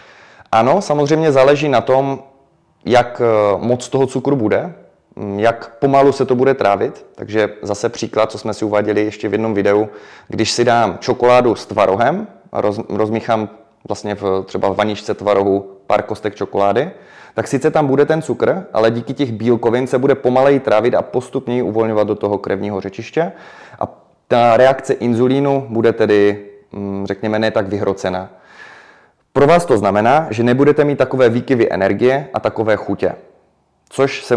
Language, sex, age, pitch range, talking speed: Czech, male, 20-39, 105-130 Hz, 155 wpm